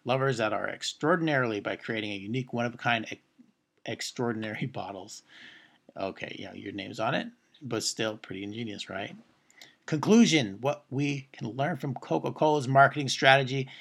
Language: English